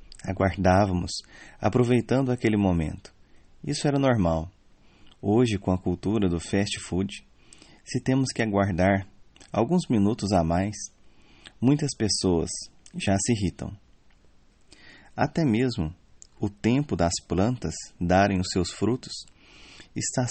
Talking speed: 110 wpm